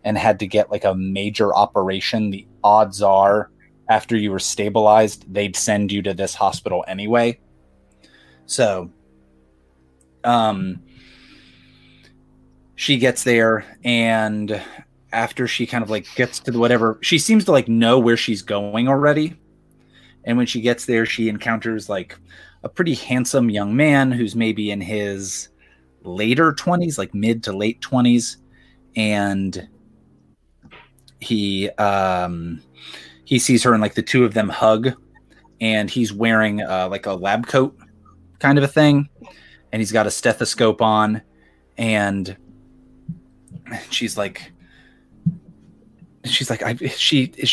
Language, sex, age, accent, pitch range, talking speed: English, male, 30-49, American, 95-120 Hz, 140 wpm